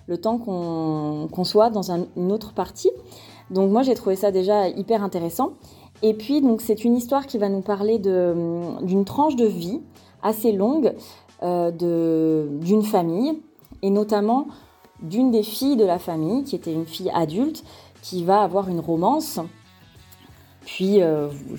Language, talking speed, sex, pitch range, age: French, 165 wpm, female, 185-235 Hz, 30-49